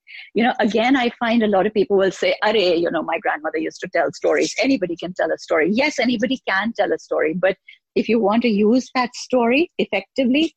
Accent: Indian